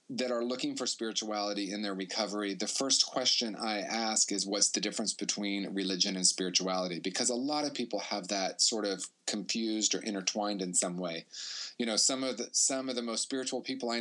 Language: English